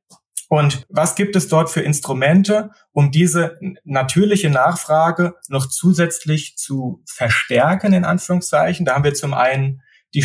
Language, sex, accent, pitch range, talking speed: German, male, German, 130-160 Hz, 135 wpm